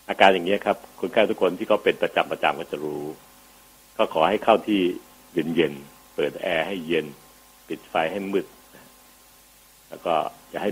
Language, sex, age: Thai, male, 60-79